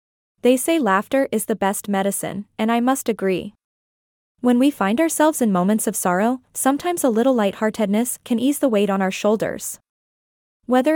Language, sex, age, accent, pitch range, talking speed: English, female, 20-39, American, 195-255 Hz, 170 wpm